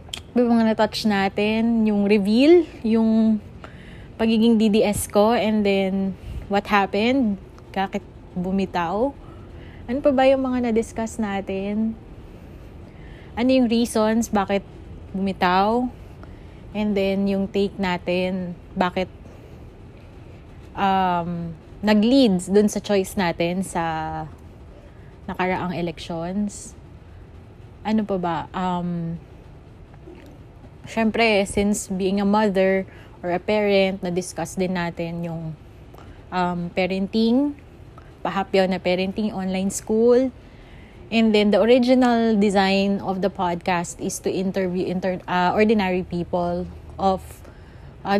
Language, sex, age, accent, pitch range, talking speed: Filipino, female, 20-39, native, 170-210 Hz, 105 wpm